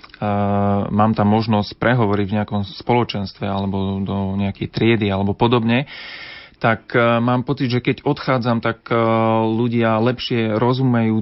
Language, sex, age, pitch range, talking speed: Slovak, male, 30-49, 105-120 Hz, 145 wpm